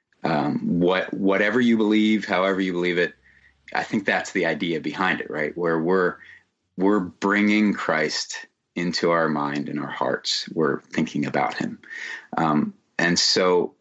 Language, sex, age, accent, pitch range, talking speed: English, male, 30-49, American, 80-100 Hz, 150 wpm